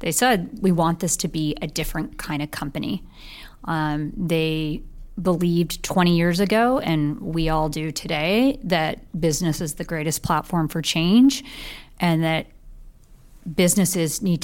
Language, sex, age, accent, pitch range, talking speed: English, female, 30-49, American, 160-180 Hz, 145 wpm